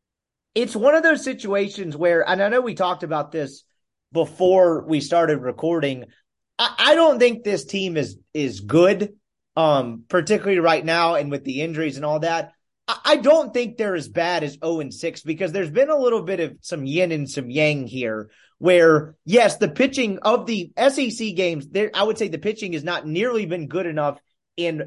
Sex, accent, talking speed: male, American, 190 wpm